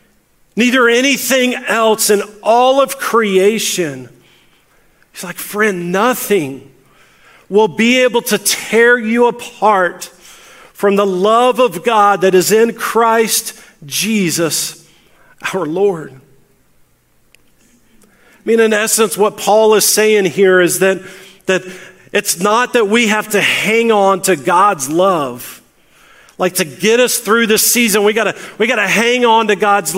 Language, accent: English, American